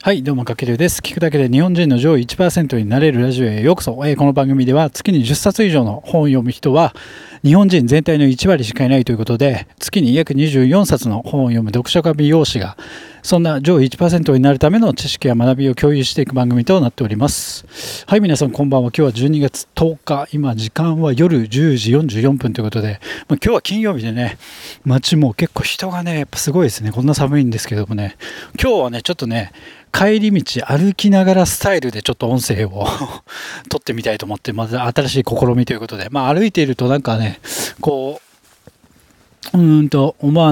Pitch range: 125-165 Hz